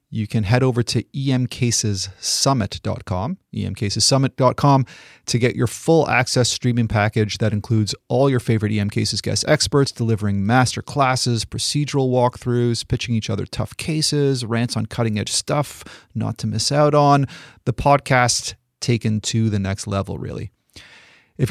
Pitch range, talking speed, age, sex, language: 110-140 Hz, 145 wpm, 30-49, male, English